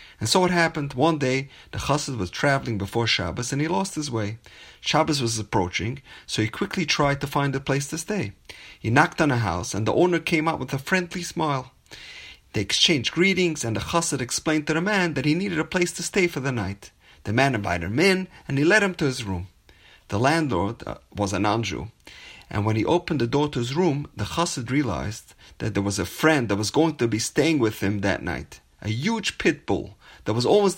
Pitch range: 110-160 Hz